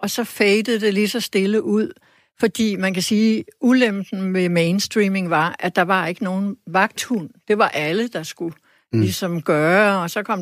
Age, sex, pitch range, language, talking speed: 60-79, female, 170-210 Hz, Danish, 185 wpm